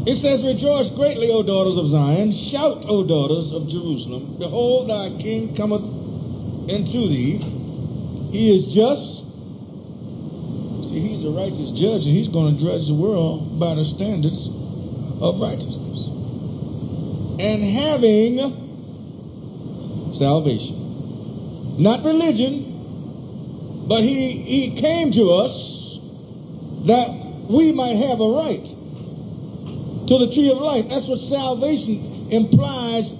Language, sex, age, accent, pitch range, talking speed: English, male, 50-69, American, 155-250 Hz, 115 wpm